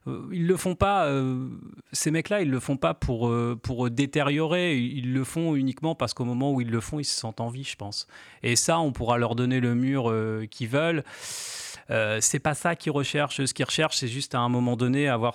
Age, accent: 30-49, French